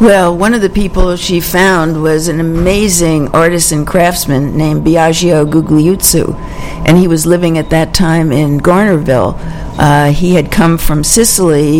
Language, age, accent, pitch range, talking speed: English, 60-79, American, 160-185 Hz, 160 wpm